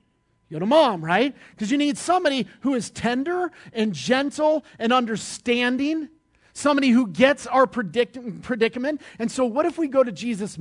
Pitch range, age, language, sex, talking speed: 215-285 Hz, 40-59, English, male, 165 wpm